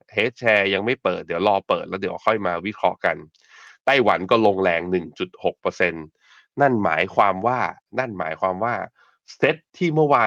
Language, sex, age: Thai, male, 20-39